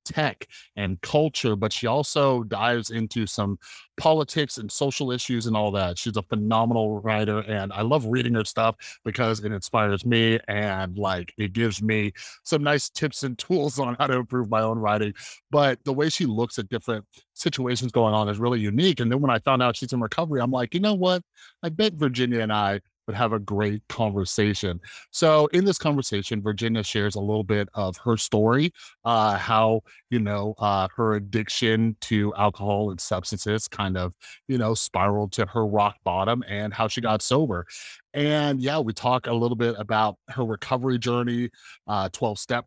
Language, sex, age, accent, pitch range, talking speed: English, male, 30-49, American, 105-130 Hz, 190 wpm